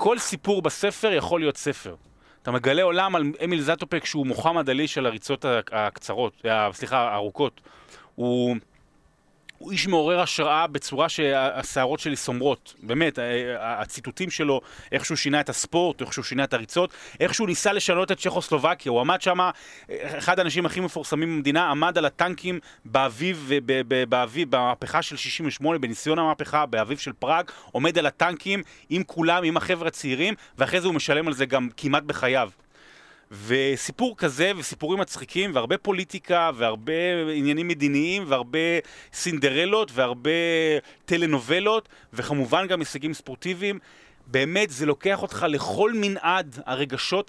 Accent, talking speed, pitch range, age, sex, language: native, 140 wpm, 135-175 Hz, 30-49, male, Hebrew